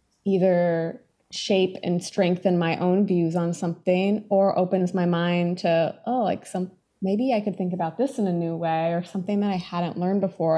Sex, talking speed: female, 195 wpm